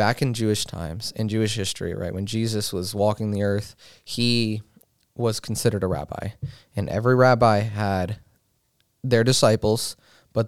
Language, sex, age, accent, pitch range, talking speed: English, male, 20-39, American, 100-120 Hz, 150 wpm